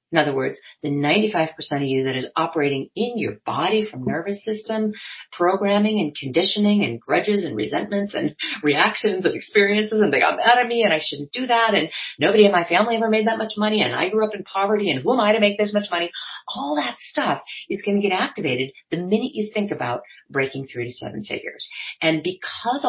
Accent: American